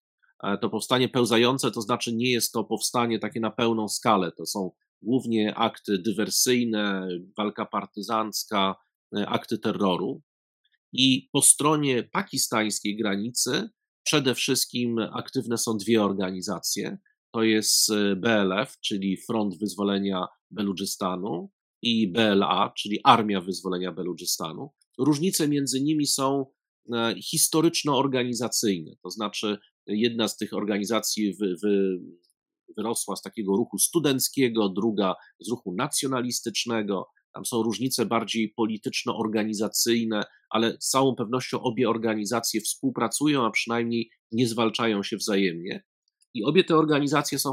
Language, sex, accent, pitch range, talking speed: Polish, male, native, 105-130 Hz, 110 wpm